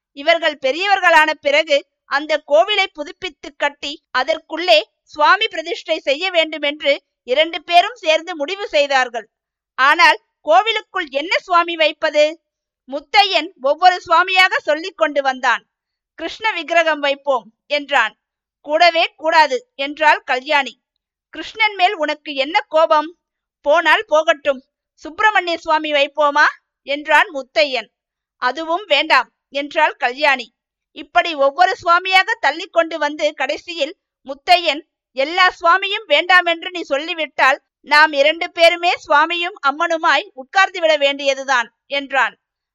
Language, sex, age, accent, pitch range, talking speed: Tamil, female, 50-69, native, 285-345 Hz, 105 wpm